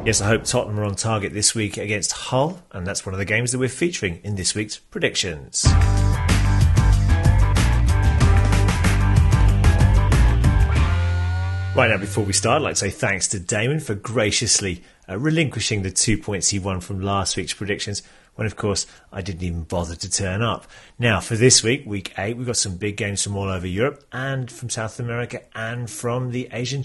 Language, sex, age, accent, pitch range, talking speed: English, male, 30-49, British, 95-120 Hz, 185 wpm